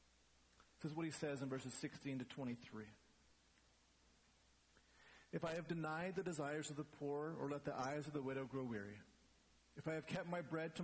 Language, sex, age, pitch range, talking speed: English, male, 40-59, 110-165 Hz, 195 wpm